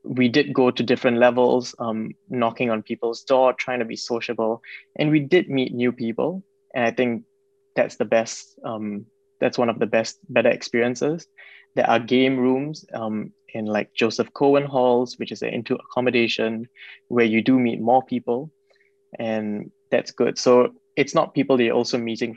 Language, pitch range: English, 115-155 Hz